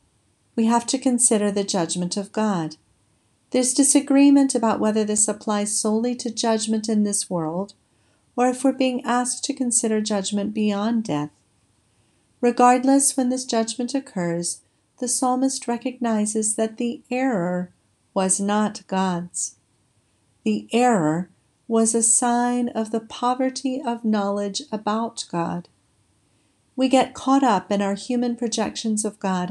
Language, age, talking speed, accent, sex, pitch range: English, 40-59, 135 wpm, American, female, 185-245 Hz